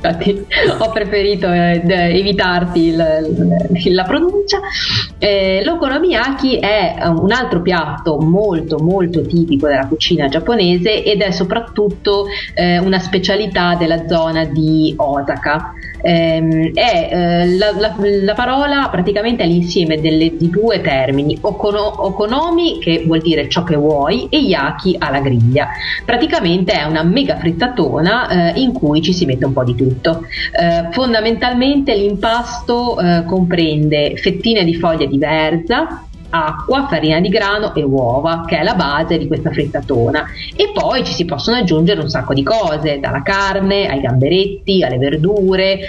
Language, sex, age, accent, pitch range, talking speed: Italian, female, 30-49, native, 160-205 Hz, 140 wpm